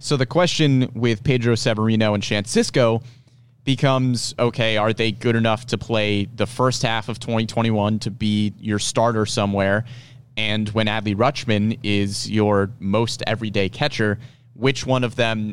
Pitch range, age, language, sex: 105-125 Hz, 30-49, English, male